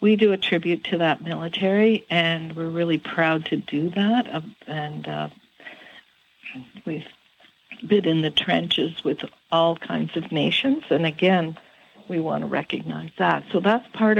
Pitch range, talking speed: 160-220 Hz, 150 wpm